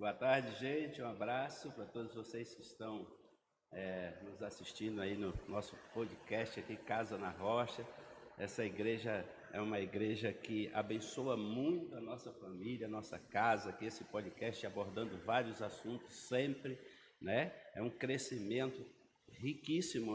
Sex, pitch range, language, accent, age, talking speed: male, 110-140 Hz, Portuguese, Brazilian, 60-79, 135 wpm